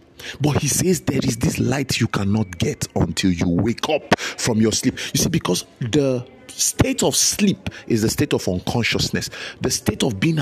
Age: 50-69